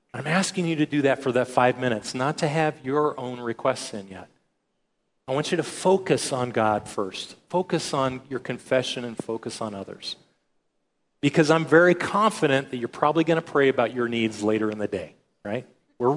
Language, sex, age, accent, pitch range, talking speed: English, male, 40-59, American, 125-165 Hz, 195 wpm